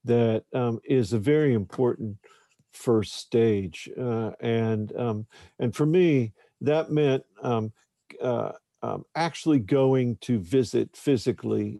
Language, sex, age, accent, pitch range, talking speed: English, male, 50-69, American, 110-135 Hz, 120 wpm